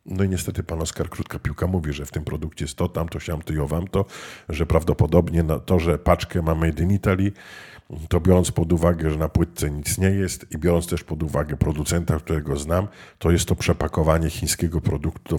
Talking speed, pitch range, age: 205 wpm, 80-95 Hz, 50-69